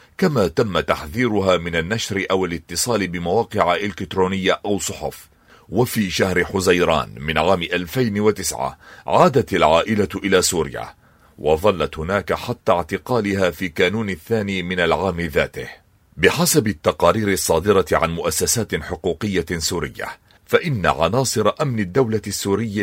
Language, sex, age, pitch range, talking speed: Arabic, male, 40-59, 90-110 Hz, 115 wpm